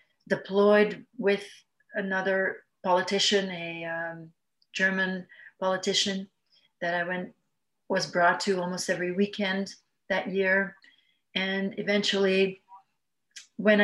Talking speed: 95 wpm